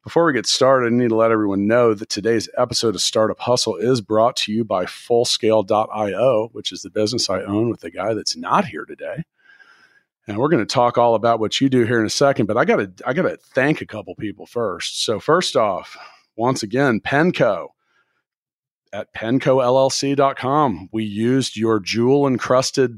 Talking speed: 185 wpm